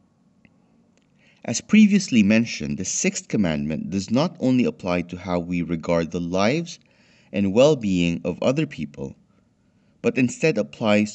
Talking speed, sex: 130 wpm, male